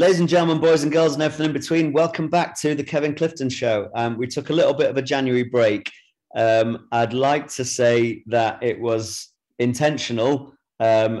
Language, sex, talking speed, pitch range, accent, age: English, male, 200 wpm, 110-130 Hz, British, 30-49